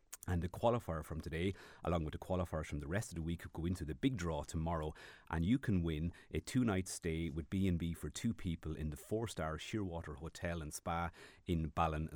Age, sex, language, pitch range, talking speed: 30-49, male, English, 80-90 Hz, 215 wpm